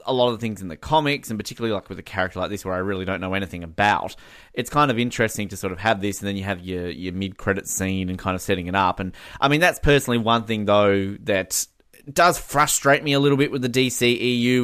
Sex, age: male, 20-39